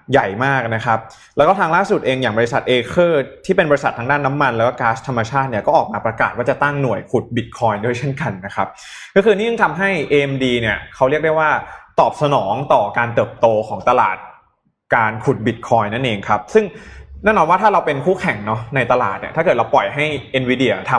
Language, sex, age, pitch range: Thai, male, 20-39, 110-155 Hz